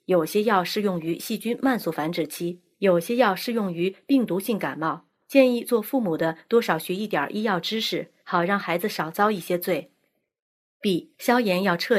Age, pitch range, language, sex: 30-49, 175-230 Hz, Chinese, female